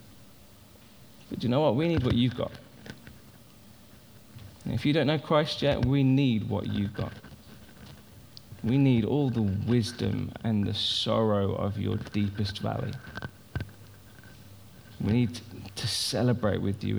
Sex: male